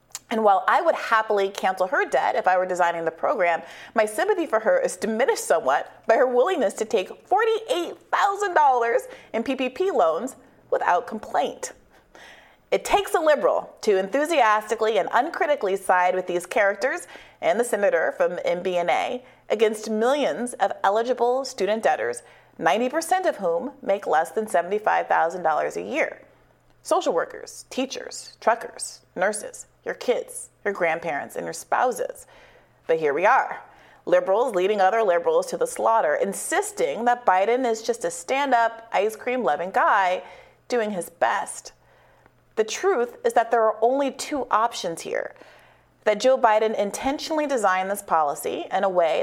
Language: English